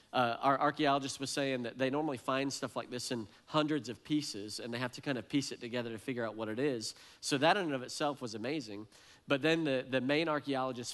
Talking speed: 245 wpm